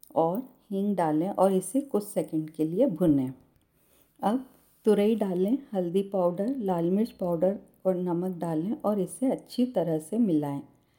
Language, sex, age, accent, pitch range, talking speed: Hindi, female, 50-69, native, 170-215 Hz, 145 wpm